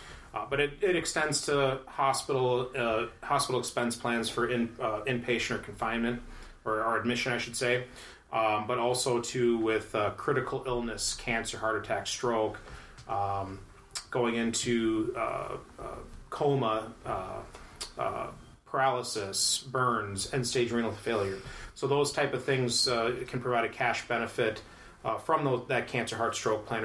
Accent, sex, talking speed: American, male, 145 wpm